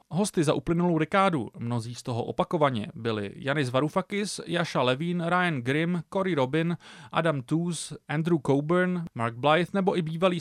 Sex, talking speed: male, 150 wpm